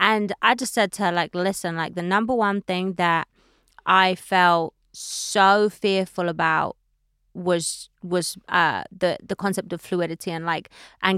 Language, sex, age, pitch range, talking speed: English, female, 20-39, 175-210 Hz, 160 wpm